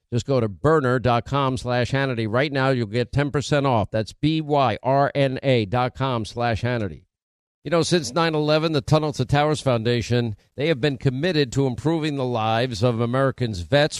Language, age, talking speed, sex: English, 50-69, 165 wpm, male